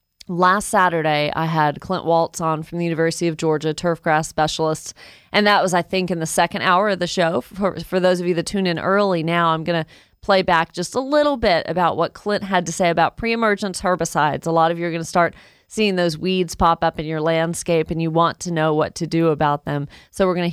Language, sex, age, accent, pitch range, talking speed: English, female, 30-49, American, 160-185 Hz, 245 wpm